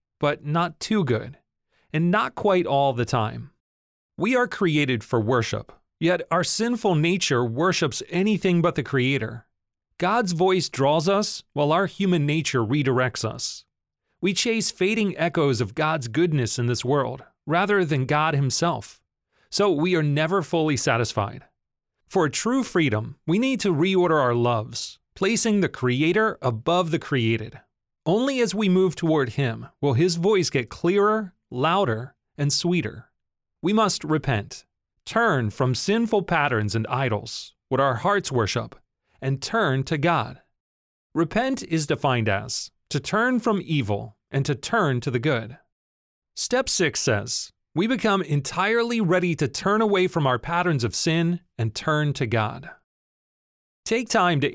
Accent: American